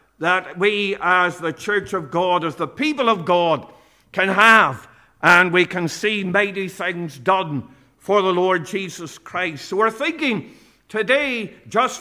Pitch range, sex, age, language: 185-235 Hz, male, 50-69, English